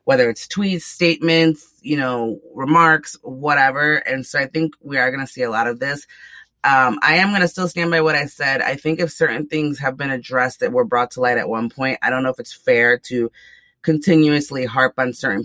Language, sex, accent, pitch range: English, female, American, 120-155 Hz